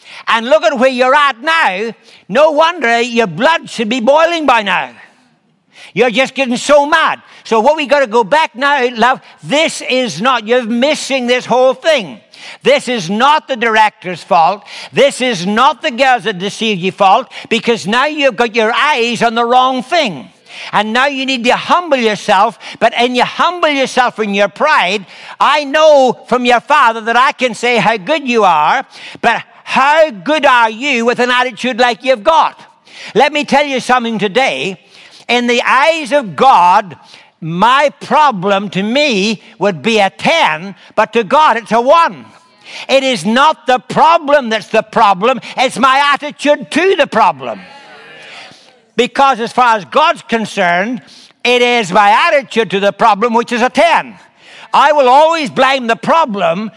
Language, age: English, 60-79